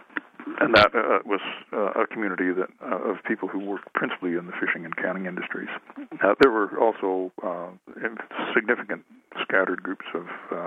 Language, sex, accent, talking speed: English, male, American, 155 wpm